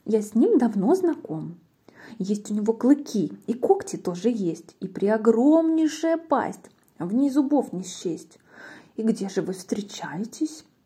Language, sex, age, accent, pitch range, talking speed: Russian, female, 20-39, native, 195-275 Hz, 150 wpm